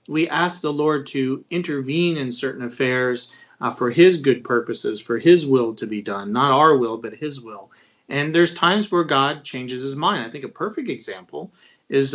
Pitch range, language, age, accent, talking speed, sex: 125-175 Hz, English, 40-59, American, 200 wpm, male